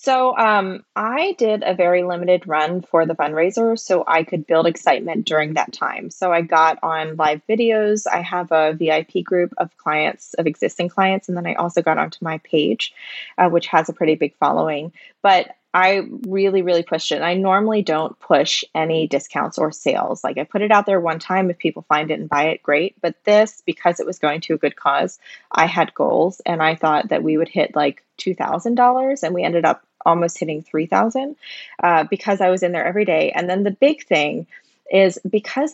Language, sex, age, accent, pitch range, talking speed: English, female, 20-39, American, 160-205 Hz, 210 wpm